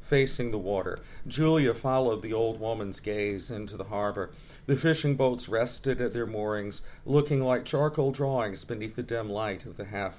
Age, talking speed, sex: 40-59, 175 wpm, male